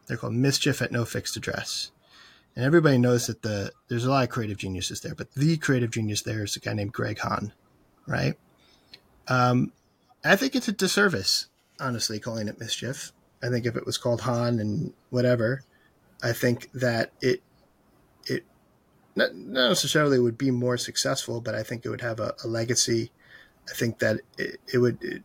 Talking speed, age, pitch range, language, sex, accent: 185 wpm, 30-49, 110-130 Hz, English, male, American